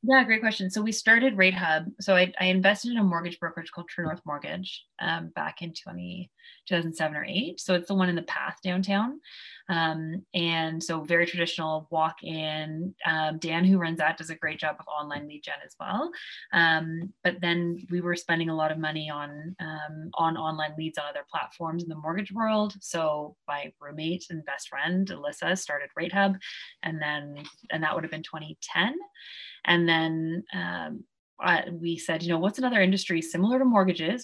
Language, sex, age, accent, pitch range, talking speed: English, female, 20-39, American, 160-185 Hz, 195 wpm